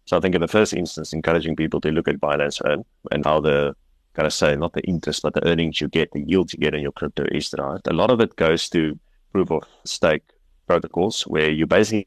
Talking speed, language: 260 wpm, English